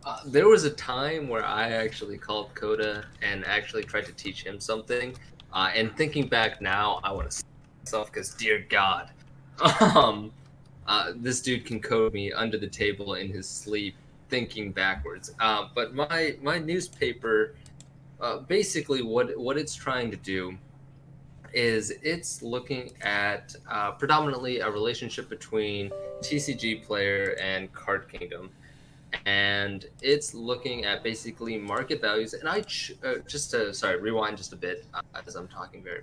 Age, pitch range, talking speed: 20-39, 100-140 Hz, 155 wpm